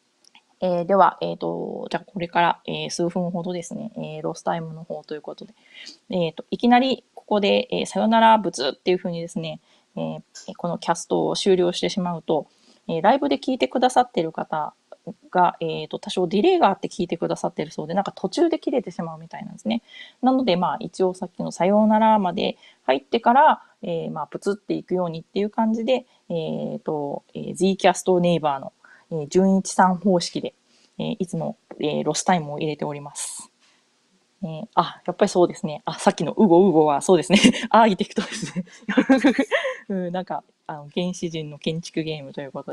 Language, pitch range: Japanese, 170-220 Hz